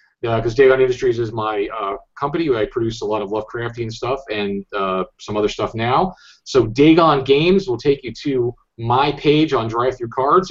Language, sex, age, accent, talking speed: English, male, 40-59, American, 200 wpm